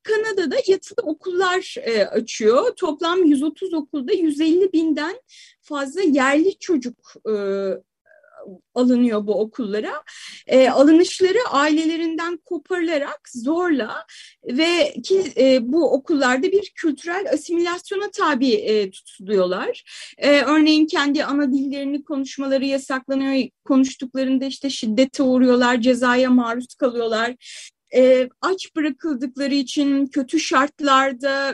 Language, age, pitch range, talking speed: Turkish, 30-49, 260-340 Hz, 90 wpm